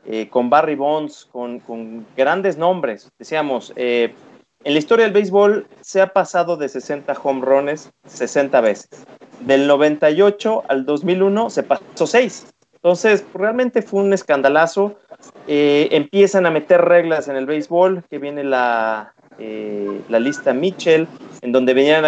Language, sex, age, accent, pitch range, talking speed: Spanish, male, 30-49, Mexican, 125-175 Hz, 145 wpm